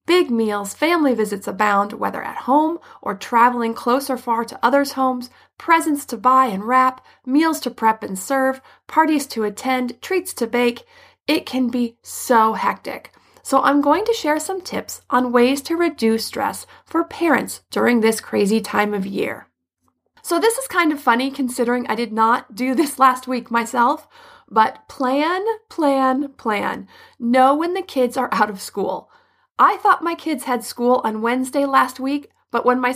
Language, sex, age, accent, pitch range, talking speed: English, female, 30-49, American, 235-305 Hz, 175 wpm